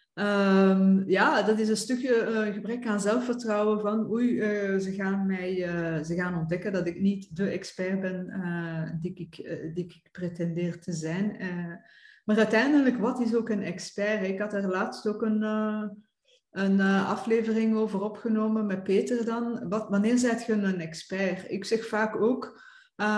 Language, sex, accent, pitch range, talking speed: Dutch, female, Dutch, 185-230 Hz, 160 wpm